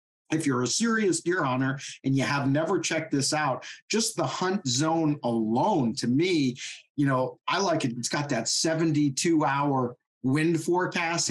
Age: 40-59